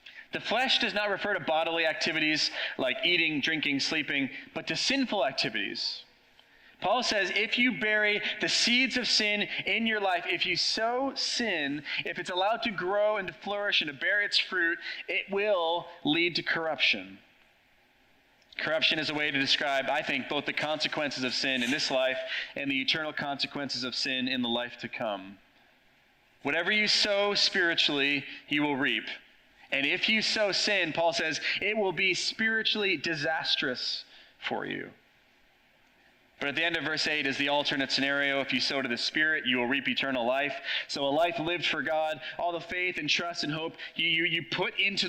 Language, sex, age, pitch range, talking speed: English, male, 30-49, 140-205 Hz, 185 wpm